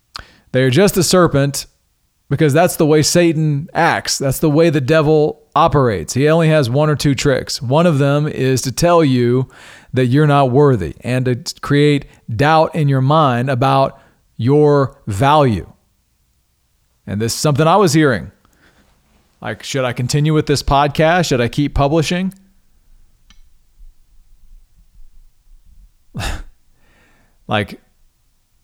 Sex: male